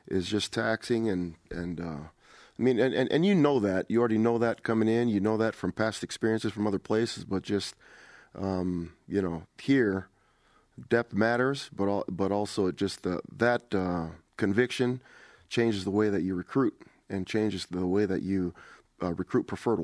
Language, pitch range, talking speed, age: English, 90-110 Hz, 185 wpm, 30-49